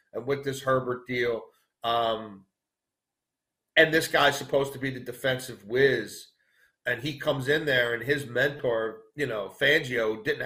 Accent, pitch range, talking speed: American, 115-150 Hz, 155 wpm